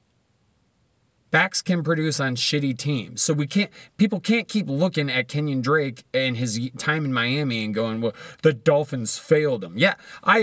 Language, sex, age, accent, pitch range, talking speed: English, male, 30-49, American, 125-185 Hz, 175 wpm